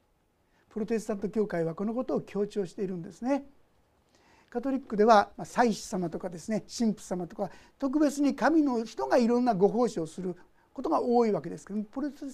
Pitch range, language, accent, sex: 200-315 Hz, Japanese, native, male